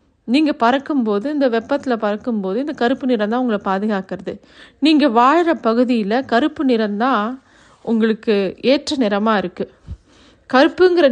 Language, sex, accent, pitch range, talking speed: Tamil, female, native, 205-260 Hz, 115 wpm